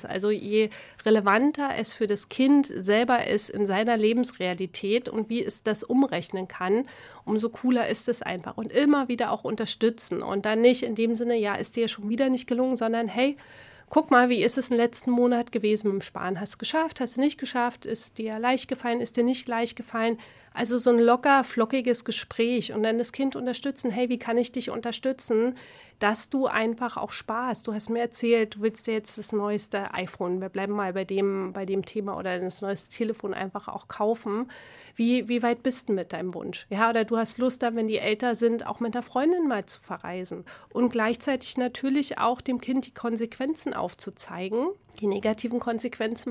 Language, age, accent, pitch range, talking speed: German, 30-49, German, 210-245 Hz, 205 wpm